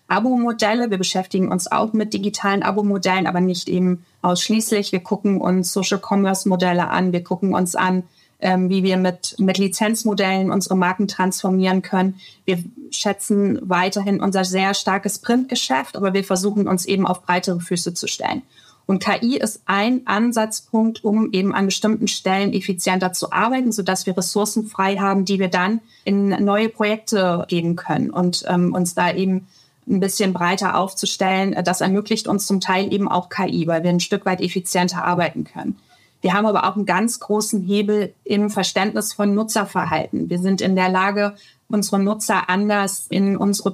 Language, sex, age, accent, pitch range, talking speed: German, female, 30-49, German, 185-205 Hz, 165 wpm